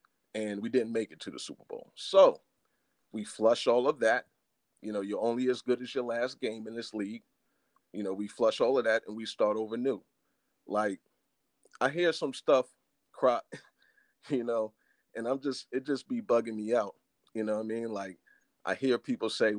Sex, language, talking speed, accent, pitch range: male, English, 200 wpm, American, 115-145 Hz